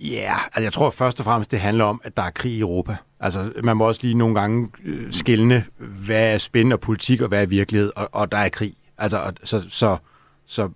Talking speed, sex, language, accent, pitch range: 245 wpm, male, Danish, native, 105-125 Hz